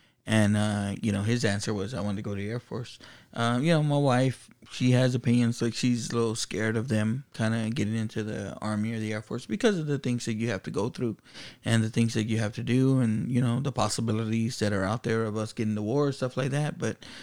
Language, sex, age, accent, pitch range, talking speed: English, male, 20-39, American, 110-125 Hz, 270 wpm